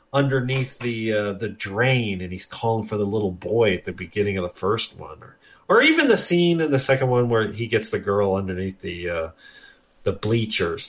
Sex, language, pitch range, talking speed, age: male, English, 100-135 Hz, 210 wpm, 40-59